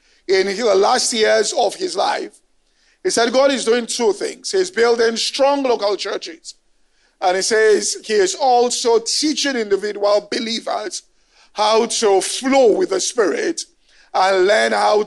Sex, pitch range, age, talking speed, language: male, 220-370 Hz, 50-69, 145 wpm, English